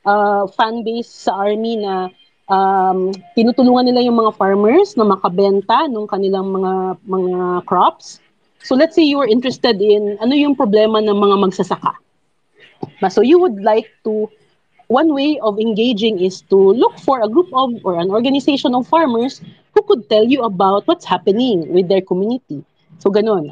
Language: Filipino